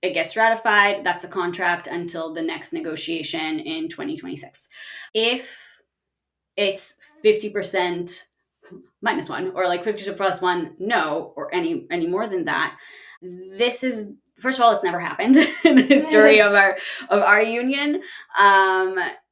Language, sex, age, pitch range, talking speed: English, female, 20-39, 175-250 Hz, 145 wpm